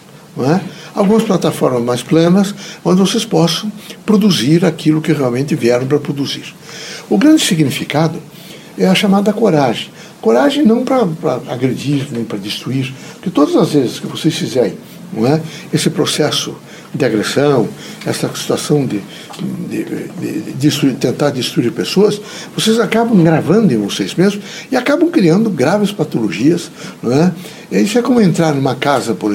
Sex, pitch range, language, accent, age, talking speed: male, 140-200 Hz, Portuguese, Brazilian, 60-79, 145 wpm